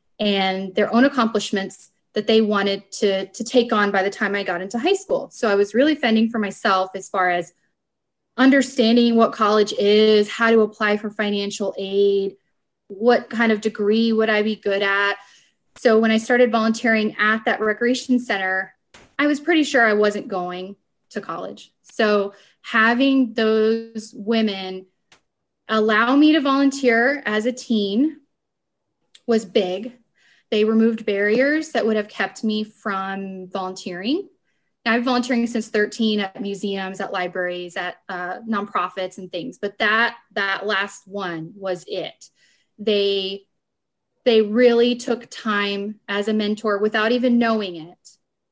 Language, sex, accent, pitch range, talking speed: English, female, American, 195-230 Hz, 150 wpm